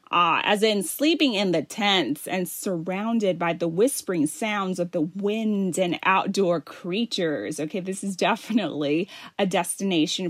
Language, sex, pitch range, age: Thai, female, 185-255 Hz, 30-49